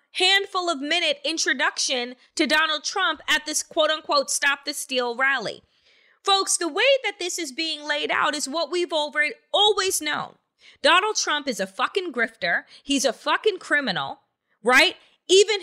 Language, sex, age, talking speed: English, female, 30-49, 155 wpm